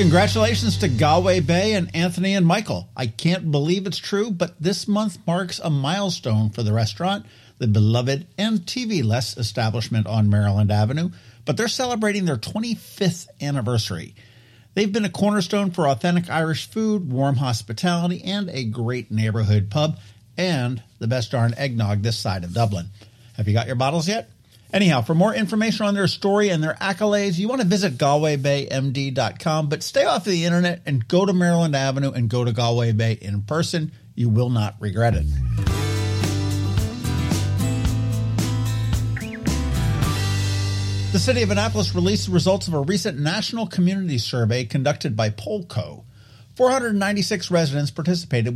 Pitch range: 110-180 Hz